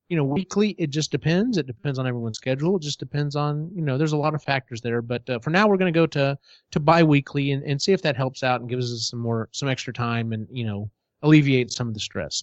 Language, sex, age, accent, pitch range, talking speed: English, male, 30-49, American, 115-155 Hz, 260 wpm